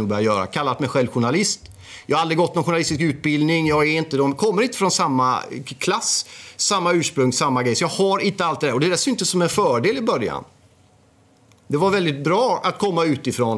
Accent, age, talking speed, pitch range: native, 30-49, 210 wpm, 125-170 Hz